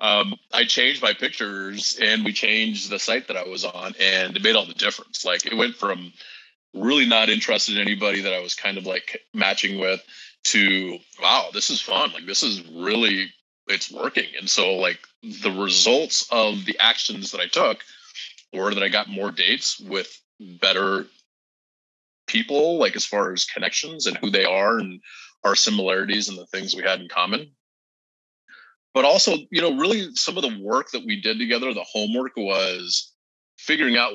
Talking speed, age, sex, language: 185 wpm, 30-49, male, English